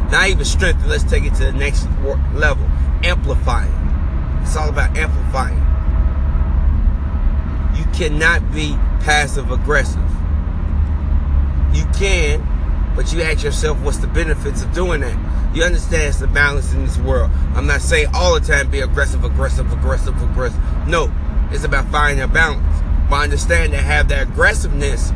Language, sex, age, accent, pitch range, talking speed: English, male, 30-49, American, 70-75 Hz, 150 wpm